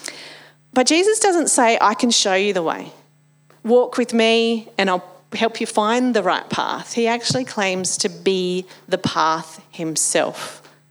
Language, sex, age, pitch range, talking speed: English, female, 40-59, 170-220 Hz, 160 wpm